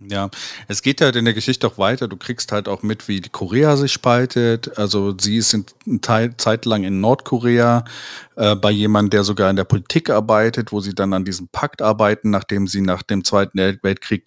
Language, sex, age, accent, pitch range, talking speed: German, male, 40-59, German, 95-120 Hz, 210 wpm